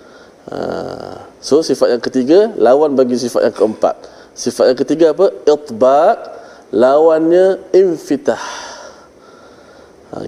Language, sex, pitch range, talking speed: Malayalam, male, 120-155 Hz, 105 wpm